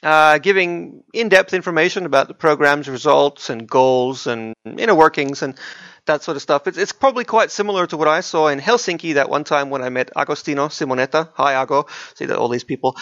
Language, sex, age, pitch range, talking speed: English, male, 30-49, 125-165 Hz, 205 wpm